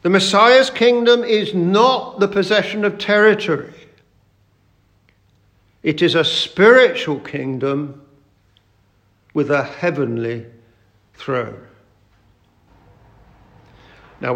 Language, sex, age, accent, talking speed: English, male, 50-69, British, 80 wpm